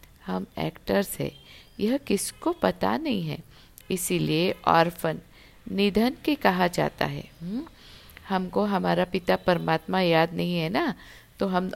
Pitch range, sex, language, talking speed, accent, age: 150-195 Hz, female, Hindi, 135 wpm, native, 50-69